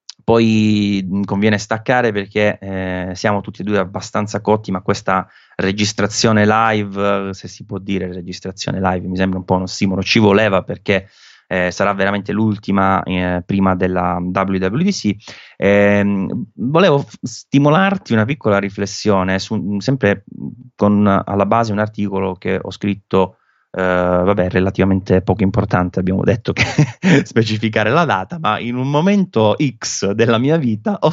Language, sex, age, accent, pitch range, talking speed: Italian, male, 20-39, native, 95-115 Hz, 145 wpm